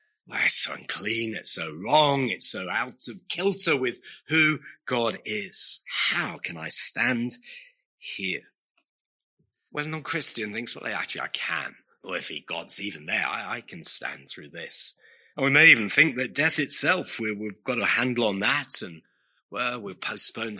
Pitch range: 115-185 Hz